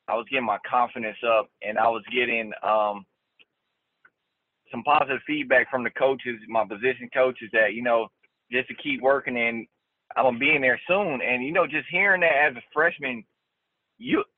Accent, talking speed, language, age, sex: American, 190 wpm, English, 20-39, male